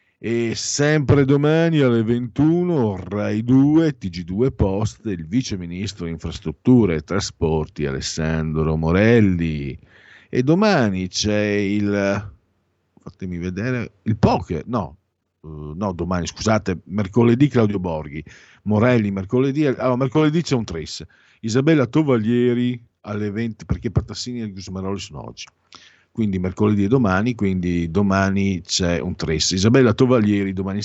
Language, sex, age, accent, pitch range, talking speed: Italian, male, 50-69, native, 85-125 Hz, 120 wpm